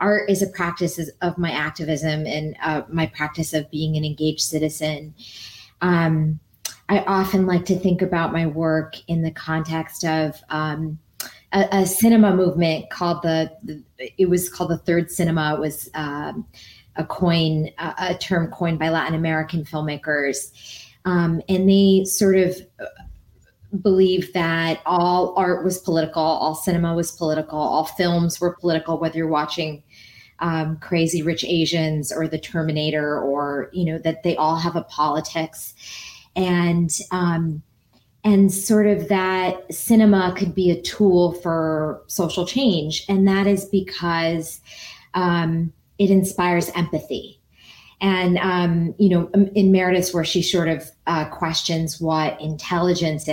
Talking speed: 145 wpm